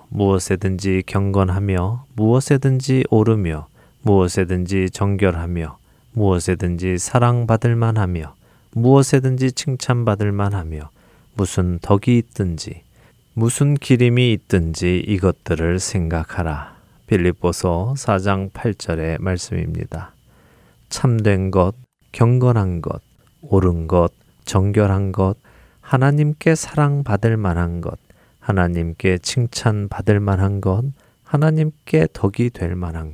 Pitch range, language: 90-120 Hz, Korean